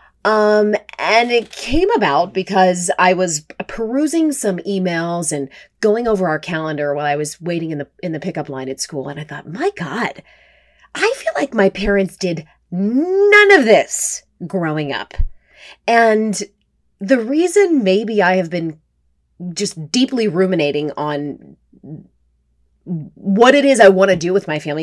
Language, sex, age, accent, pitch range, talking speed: English, female, 30-49, American, 150-215 Hz, 155 wpm